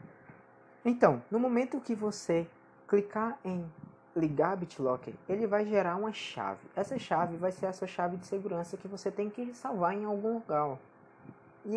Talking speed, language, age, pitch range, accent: 165 wpm, Portuguese, 20-39, 135-200 Hz, Brazilian